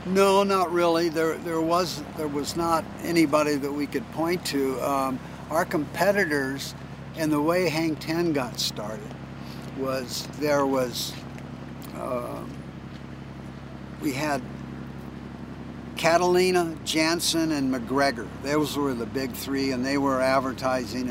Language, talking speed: English, 125 wpm